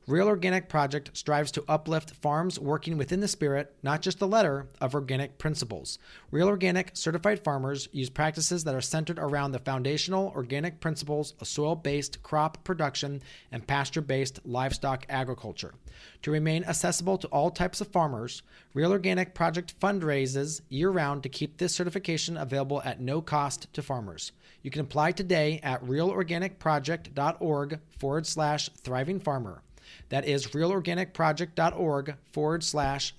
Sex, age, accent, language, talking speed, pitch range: male, 40-59, American, English, 140 wpm, 140-180 Hz